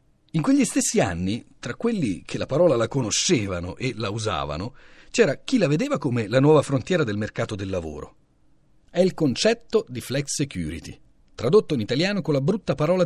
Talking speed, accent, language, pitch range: 180 wpm, native, Italian, 120-195 Hz